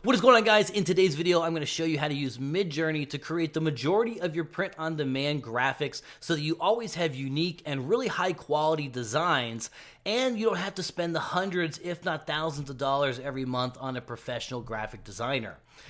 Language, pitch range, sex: Vietnamese, 135-165 Hz, male